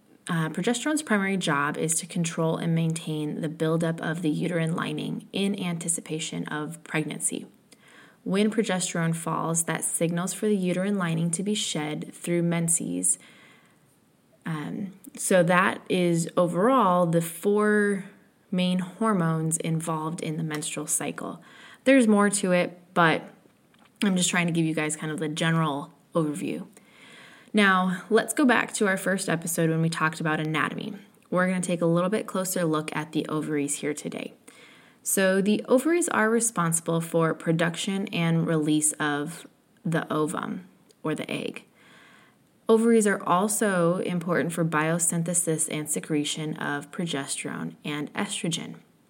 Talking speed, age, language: 145 wpm, 20-39, English